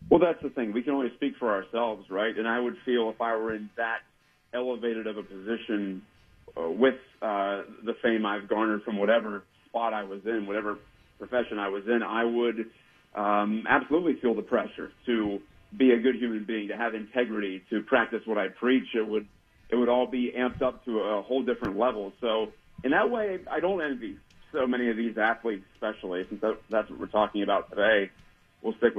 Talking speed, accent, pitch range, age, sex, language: 205 wpm, American, 105-125 Hz, 40-59, male, English